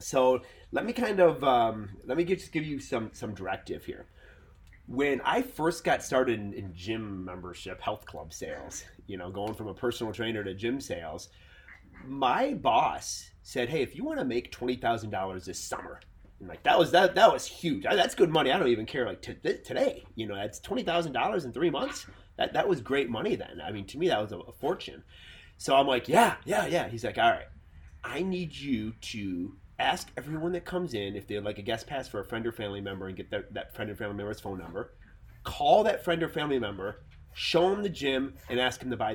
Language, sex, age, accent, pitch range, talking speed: English, male, 30-49, American, 100-145 Hz, 225 wpm